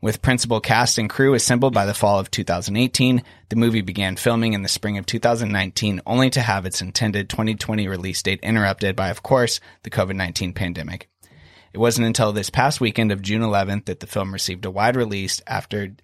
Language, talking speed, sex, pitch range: English, 195 wpm, male, 100-115 Hz